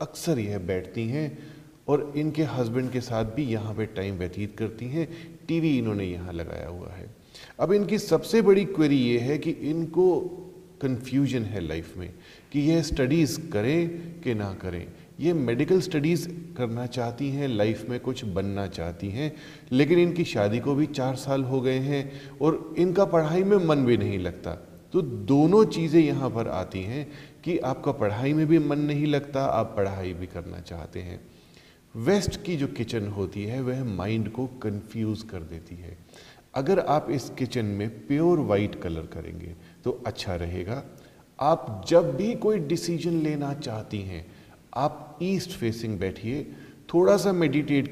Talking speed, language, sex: 165 wpm, Hindi, male